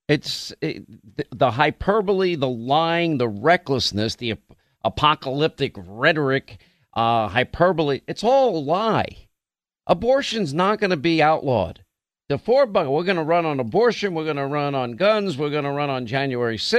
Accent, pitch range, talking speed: American, 130-185 Hz, 160 wpm